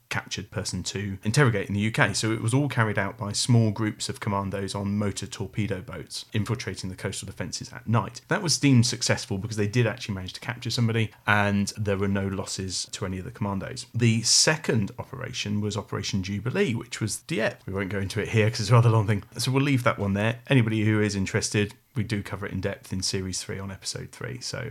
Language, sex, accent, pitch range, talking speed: English, male, British, 100-125 Hz, 230 wpm